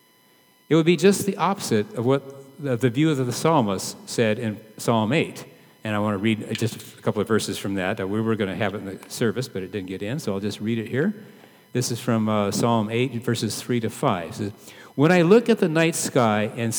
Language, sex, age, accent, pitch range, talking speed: English, male, 50-69, American, 110-140 Hz, 240 wpm